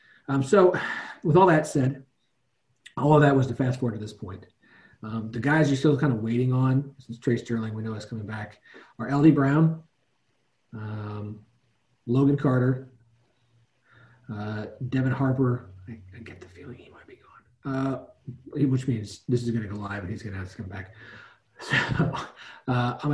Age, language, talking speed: 40-59, English, 180 wpm